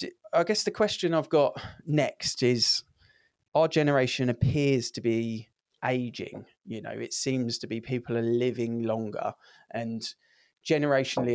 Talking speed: 135 wpm